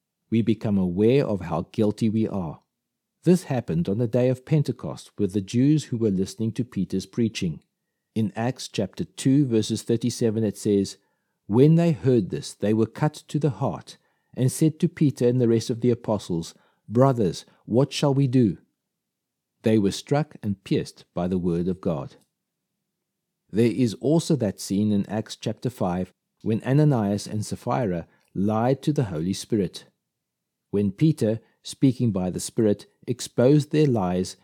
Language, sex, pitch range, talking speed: English, male, 100-135 Hz, 165 wpm